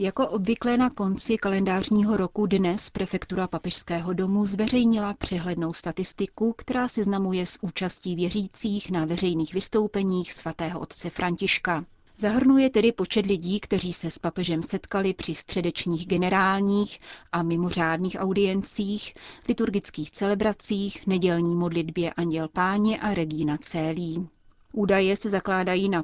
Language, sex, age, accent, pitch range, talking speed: Czech, female, 30-49, native, 175-205 Hz, 120 wpm